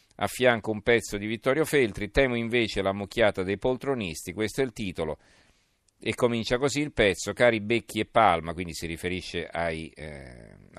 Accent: native